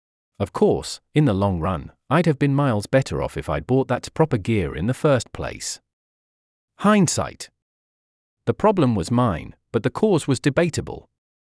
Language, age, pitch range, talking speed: English, 40-59, 95-140 Hz, 165 wpm